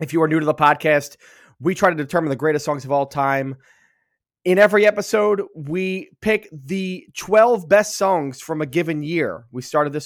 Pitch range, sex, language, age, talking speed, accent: 145-185 Hz, male, English, 20-39, 195 wpm, American